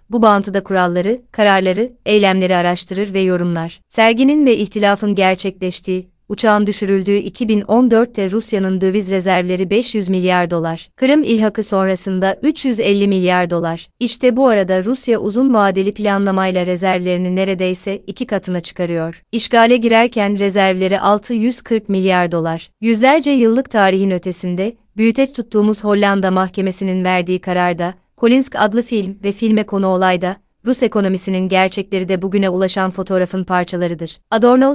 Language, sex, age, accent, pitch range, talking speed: Turkish, female, 30-49, native, 185-225 Hz, 125 wpm